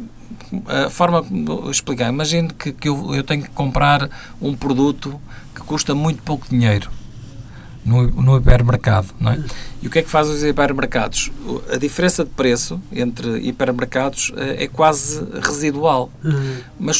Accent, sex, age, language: Portuguese, male, 50-69, Portuguese